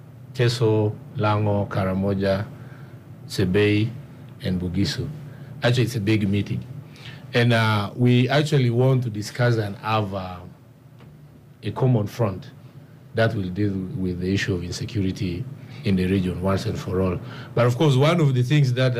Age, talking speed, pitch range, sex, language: 50-69, 150 wpm, 100-135 Hz, male, English